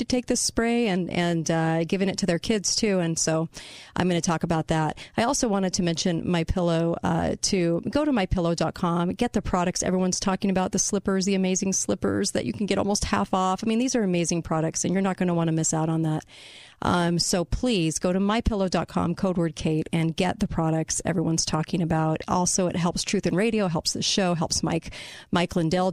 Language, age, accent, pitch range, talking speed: English, 40-59, American, 165-195 Hz, 225 wpm